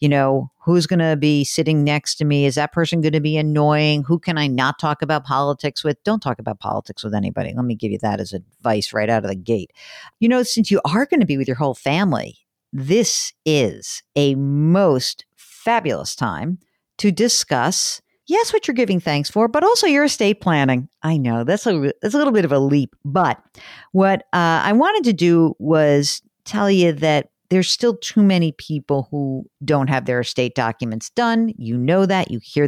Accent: American